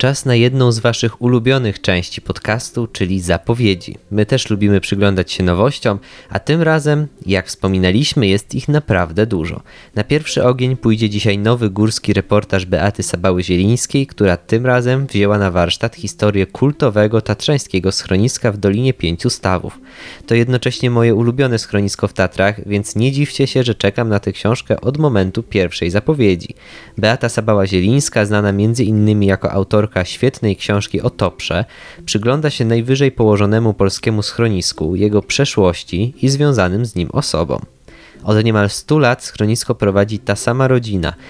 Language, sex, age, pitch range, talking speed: Polish, male, 20-39, 100-125 Hz, 150 wpm